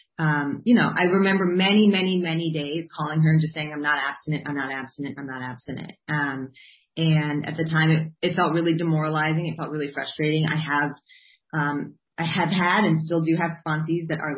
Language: English